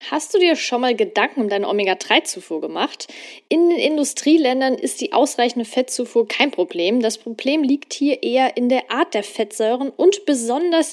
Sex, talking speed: female, 170 wpm